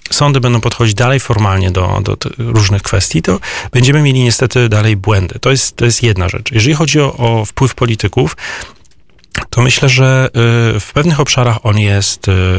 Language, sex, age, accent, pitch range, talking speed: Polish, male, 30-49, native, 100-130 Hz, 160 wpm